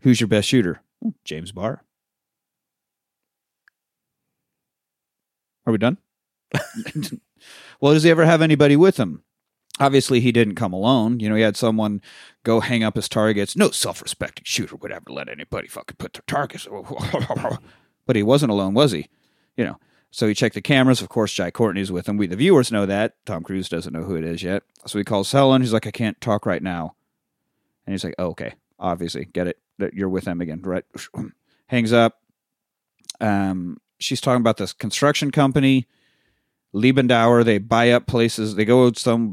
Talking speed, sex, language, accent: 175 wpm, male, English, American